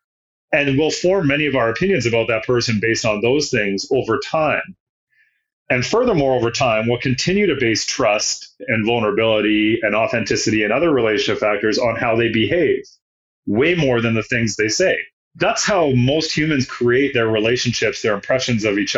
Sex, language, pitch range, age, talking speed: male, English, 105-140 Hz, 30-49, 175 wpm